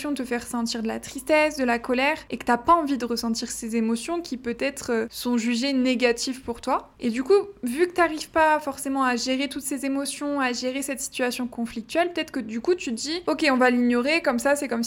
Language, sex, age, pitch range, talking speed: French, female, 20-39, 235-275 Hz, 240 wpm